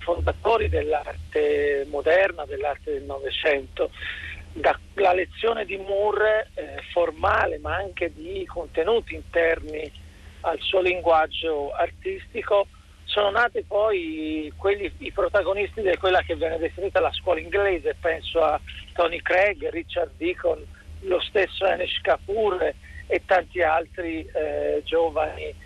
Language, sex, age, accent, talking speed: Italian, male, 50-69, native, 115 wpm